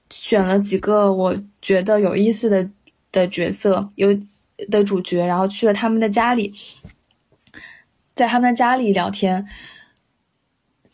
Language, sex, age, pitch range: Chinese, female, 20-39, 195-240 Hz